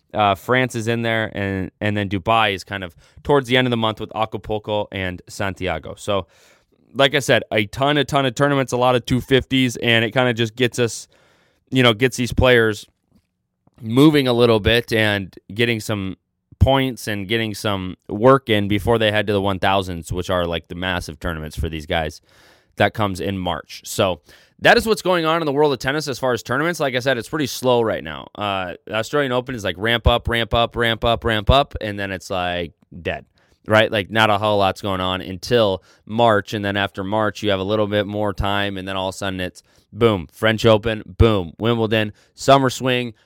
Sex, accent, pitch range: male, American, 100-125 Hz